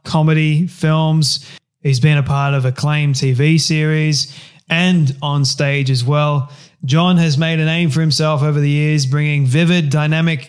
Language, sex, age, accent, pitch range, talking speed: English, male, 20-39, Australian, 140-160 Hz, 160 wpm